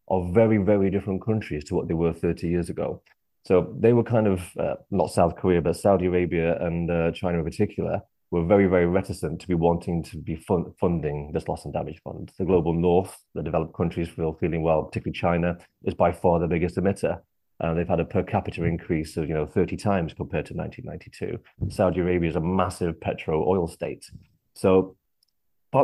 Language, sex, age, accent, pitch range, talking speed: English, male, 30-49, British, 85-100 Hz, 205 wpm